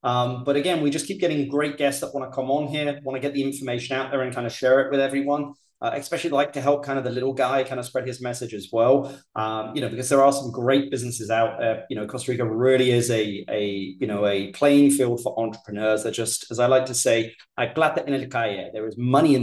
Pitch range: 115-140 Hz